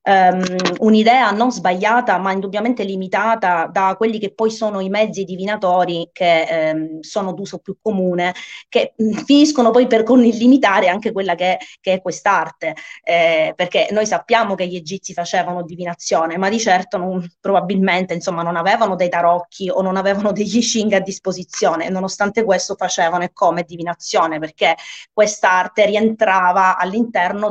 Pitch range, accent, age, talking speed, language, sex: 180-220 Hz, native, 30-49, 150 wpm, Italian, female